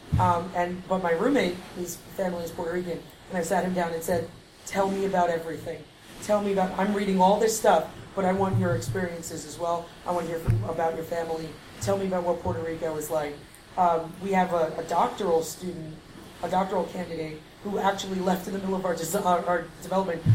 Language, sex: English, female